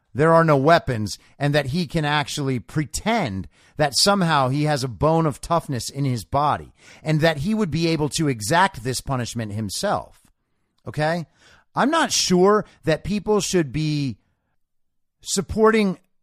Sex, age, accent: male, 40-59, American